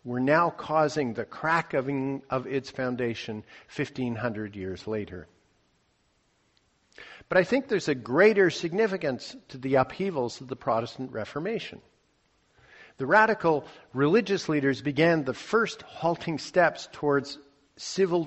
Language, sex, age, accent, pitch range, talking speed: English, male, 50-69, American, 130-180 Hz, 120 wpm